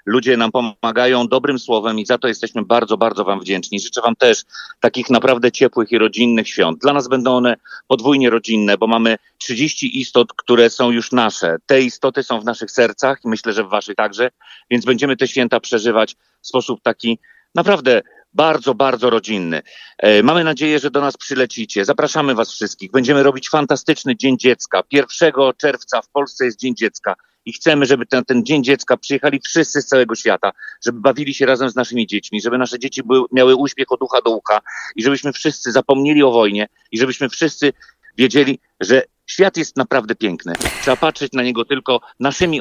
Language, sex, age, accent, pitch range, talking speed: Polish, male, 40-59, native, 115-140 Hz, 185 wpm